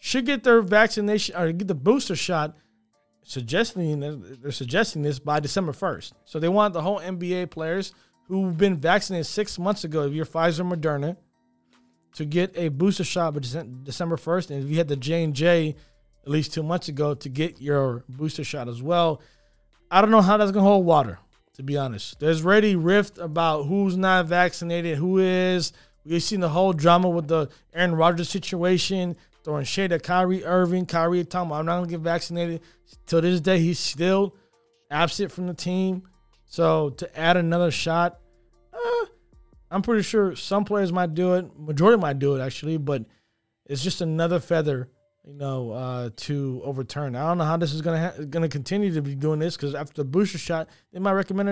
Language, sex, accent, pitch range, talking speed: English, male, American, 145-185 Hz, 190 wpm